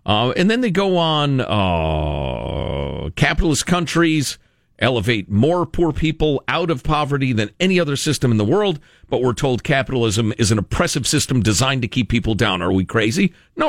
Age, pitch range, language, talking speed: 50-69, 125-195 Hz, English, 175 wpm